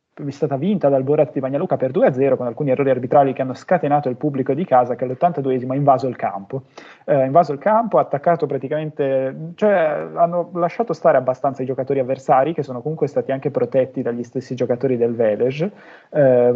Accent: native